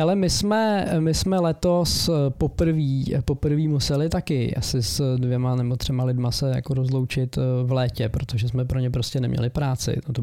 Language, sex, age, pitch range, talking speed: Czech, male, 20-39, 125-135 Hz, 170 wpm